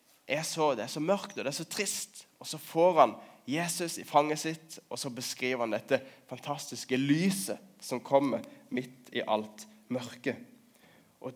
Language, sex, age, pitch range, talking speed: English, male, 20-39, 130-170 Hz, 175 wpm